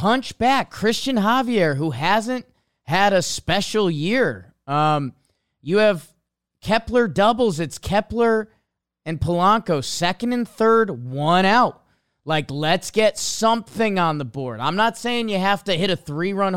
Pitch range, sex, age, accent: 140-200 Hz, male, 30-49, American